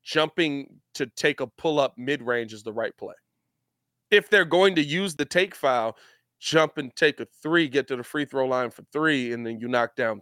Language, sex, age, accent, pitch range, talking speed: English, male, 20-39, American, 125-175 Hz, 210 wpm